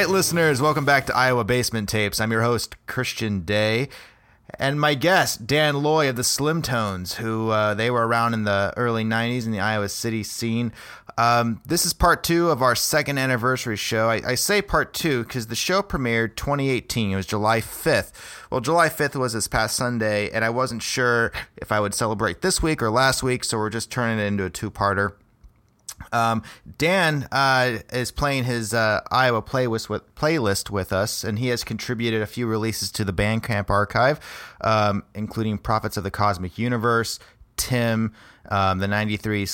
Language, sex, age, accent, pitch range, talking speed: English, male, 30-49, American, 105-135 Hz, 185 wpm